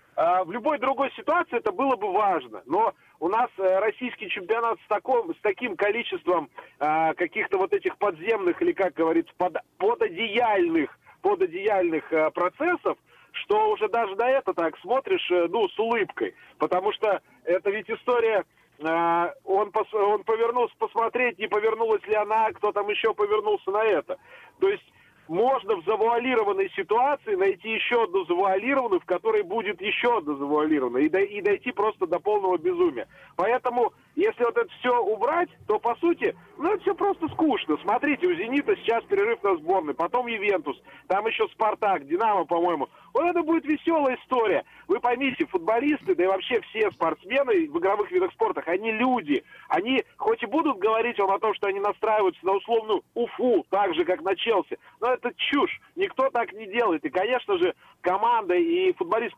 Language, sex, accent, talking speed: Russian, male, native, 160 wpm